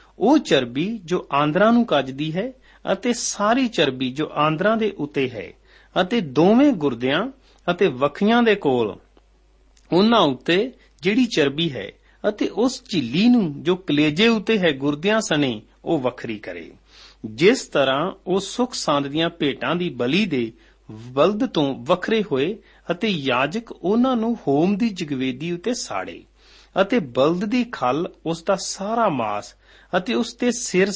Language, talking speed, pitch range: Punjabi, 145 wpm, 150-225 Hz